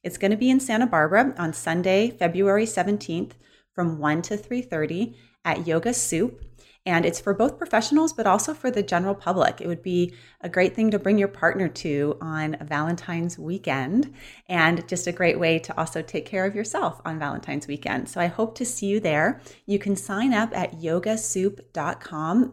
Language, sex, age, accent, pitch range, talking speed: English, female, 30-49, American, 155-205 Hz, 185 wpm